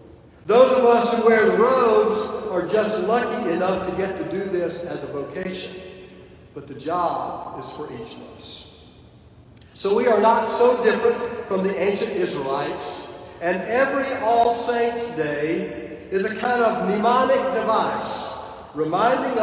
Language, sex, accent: English, male, American